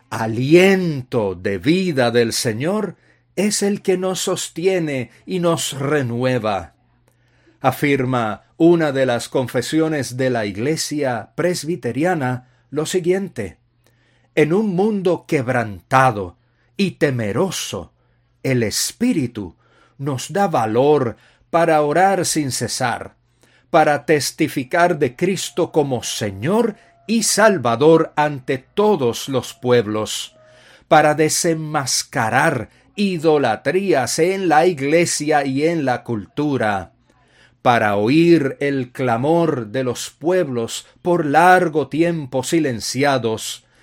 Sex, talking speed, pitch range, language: male, 100 wpm, 120-170 Hz, English